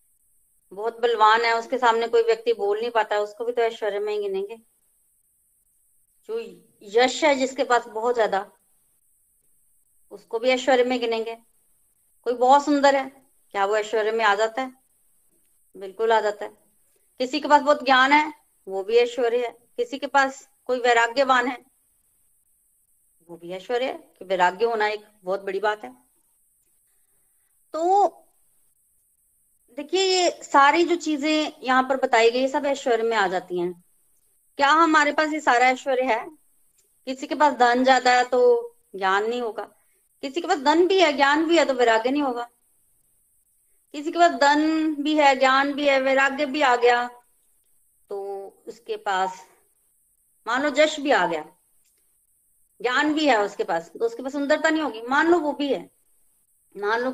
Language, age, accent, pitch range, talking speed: Hindi, 30-49, native, 225-295 Hz, 160 wpm